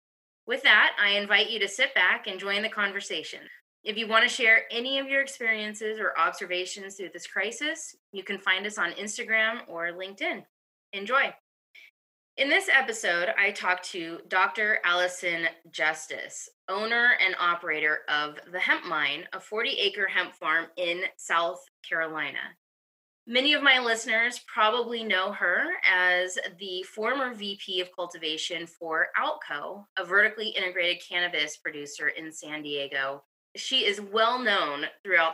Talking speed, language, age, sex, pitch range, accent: 145 wpm, English, 20-39, female, 170-220 Hz, American